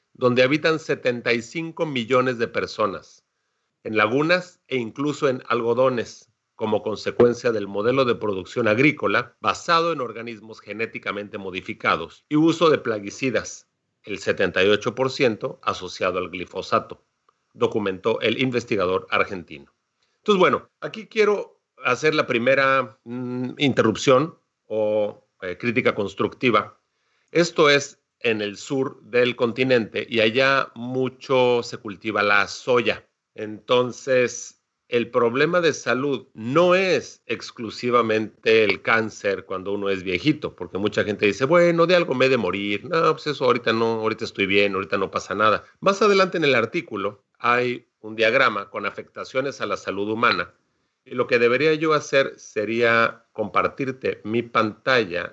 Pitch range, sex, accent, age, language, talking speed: 110-150 Hz, male, Mexican, 40-59, Spanish, 135 wpm